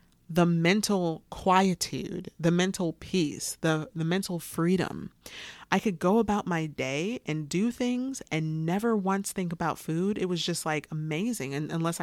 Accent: American